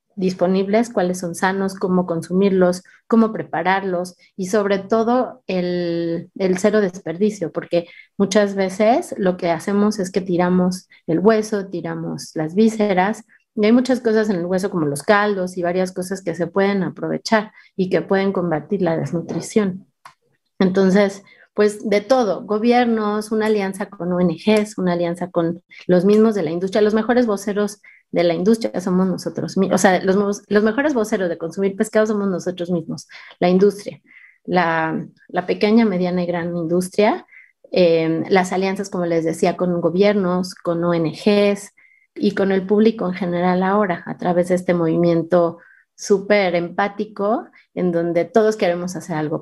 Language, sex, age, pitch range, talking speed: Spanish, female, 30-49, 175-210 Hz, 155 wpm